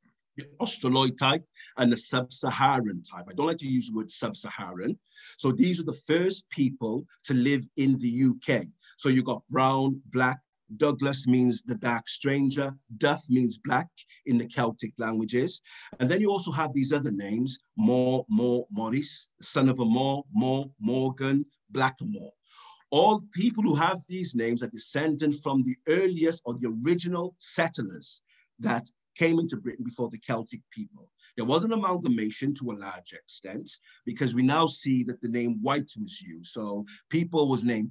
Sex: male